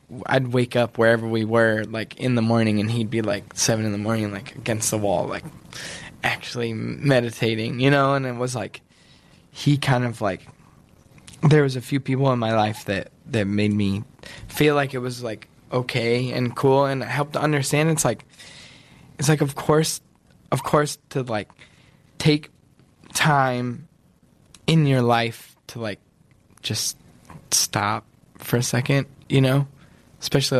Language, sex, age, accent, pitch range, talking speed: English, male, 10-29, American, 110-135 Hz, 165 wpm